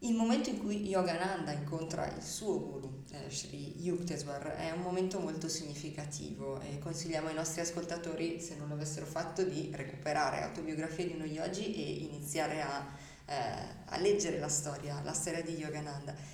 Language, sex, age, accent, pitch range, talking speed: Italian, female, 20-39, native, 145-180 Hz, 165 wpm